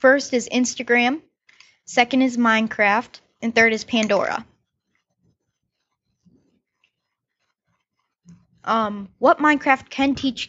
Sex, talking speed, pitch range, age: female, 85 wpm, 210-275 Hz, 10-29